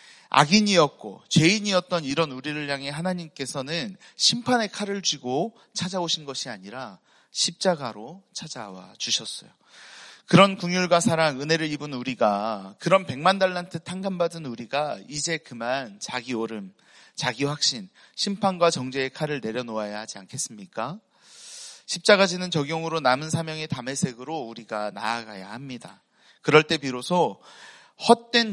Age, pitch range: 40-59, 125-190 Hz